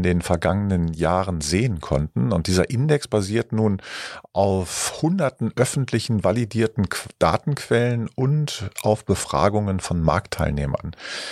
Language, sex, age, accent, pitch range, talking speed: German, male, 50-69, German, 95-130 Hz, 110 wpm